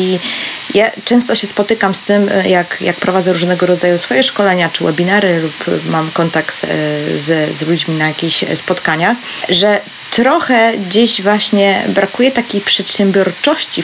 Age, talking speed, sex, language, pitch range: 20-39, 140 wpm, female, Polish, 165-195 Hz